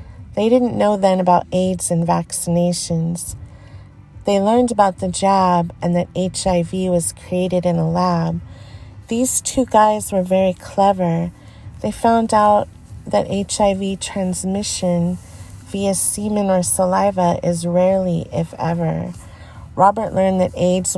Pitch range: 170-195 Hz